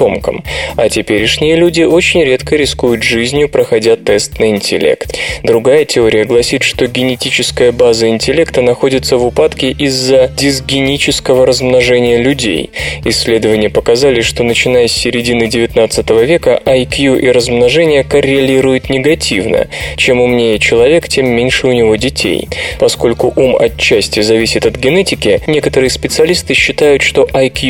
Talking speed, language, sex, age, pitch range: 125 wpm, Russian, male, 20-39, 120-175 Hz